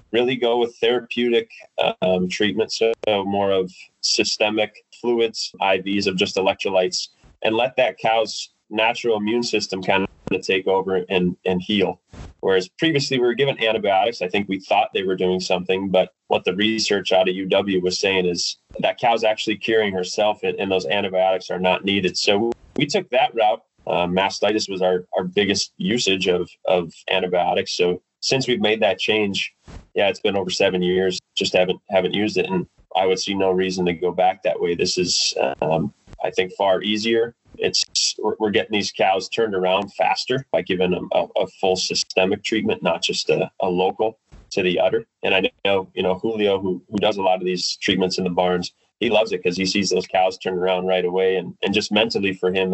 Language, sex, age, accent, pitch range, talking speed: English, male, 20-39, American, 90-105 Hz, 200 wpm